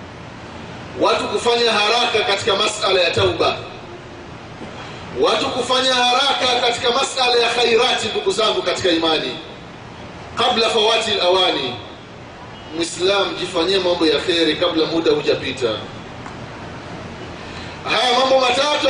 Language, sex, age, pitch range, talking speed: Swahili, male, 30-49, 180-275 Hz, 100 wpm